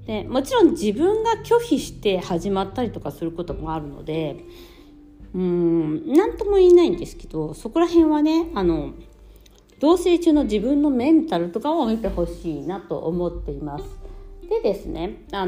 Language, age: Japanese, 40-59